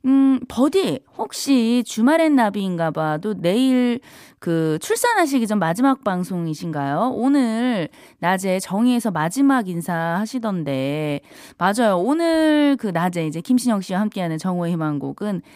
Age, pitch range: 20-39, 170-250 Hz